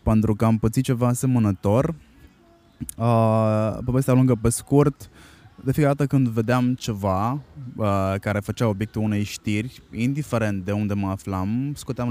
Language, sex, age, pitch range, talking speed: Romanian, male, 20-39, 105-135 Hz, 135 wpm